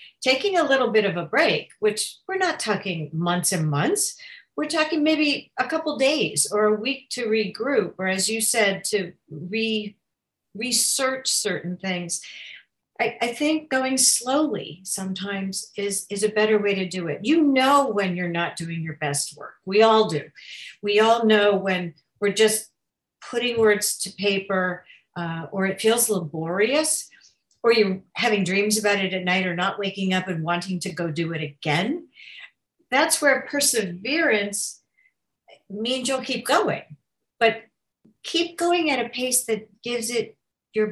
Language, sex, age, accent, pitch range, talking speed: English, female, 50-69, American, 190-255 Hz, 160 wpm